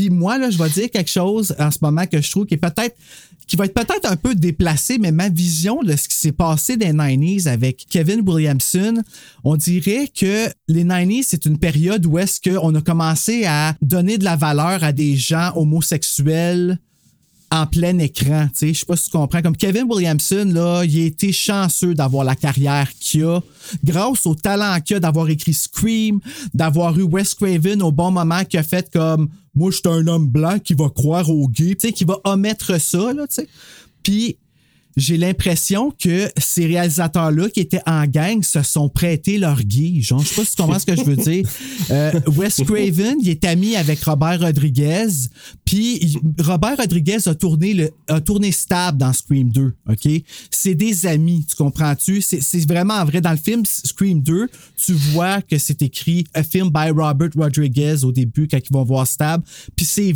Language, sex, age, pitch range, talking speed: French, male, 30-49, 155-195 Hz, 205 wpm